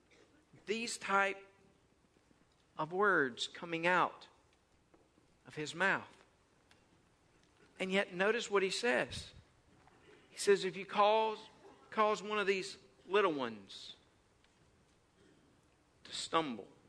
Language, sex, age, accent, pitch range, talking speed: English, male, 50-69, American, 140-200 Hz, 100 wpm